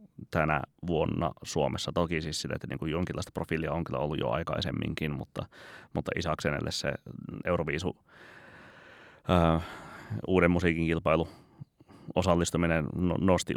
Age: 30-49